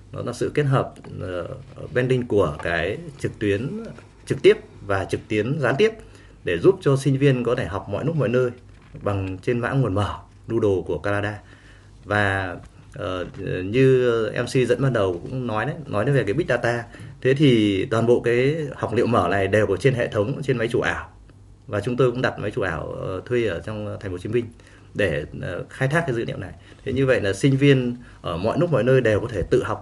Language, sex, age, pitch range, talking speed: Vietnamese, male, 20-39, 100-135 Hz, 225 wpm